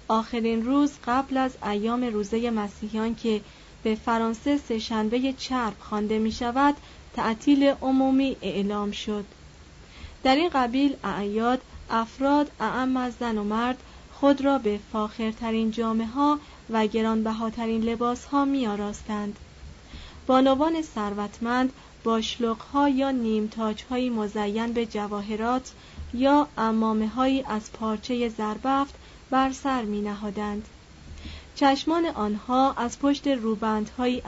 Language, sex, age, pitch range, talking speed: Persian, female, 30-49, 215-260 Hz, 110 wpm